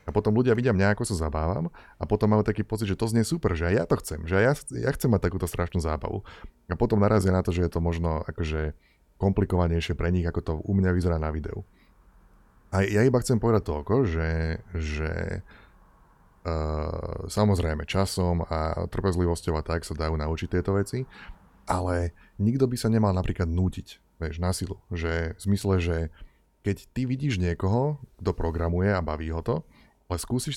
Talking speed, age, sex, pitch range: 185 wpm, 30-49, male, 85-105 Hz